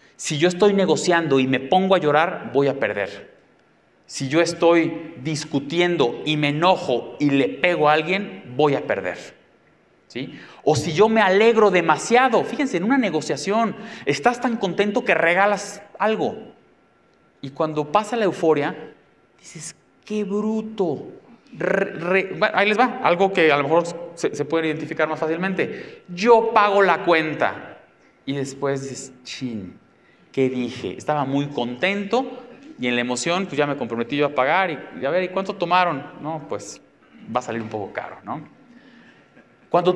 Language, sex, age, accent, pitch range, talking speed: Spanish, male, 30-49, Mexican, 135-200 Hz, 165 wpm